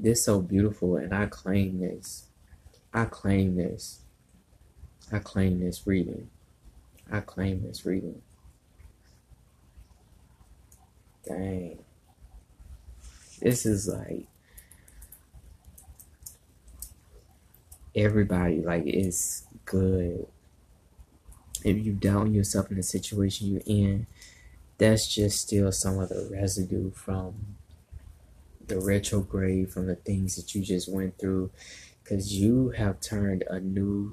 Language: English